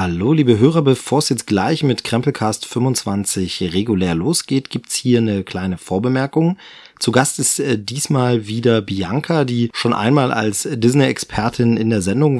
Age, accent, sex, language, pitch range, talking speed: 30-49, German, male, German, 105-135 Hz, 150 wpm